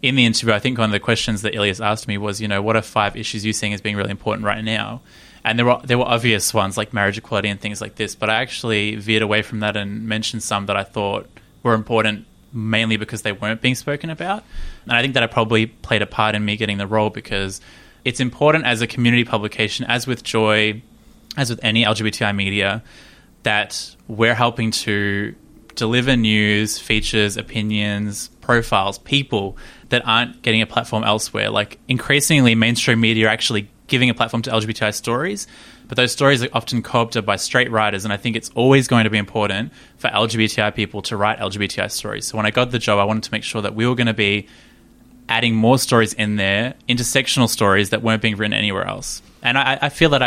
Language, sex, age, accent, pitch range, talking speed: English, male, 20-39, Australian, 105-120 Hz, 215 wpm